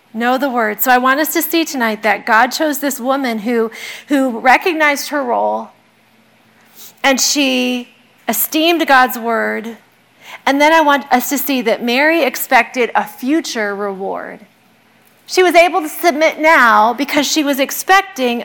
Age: 40-59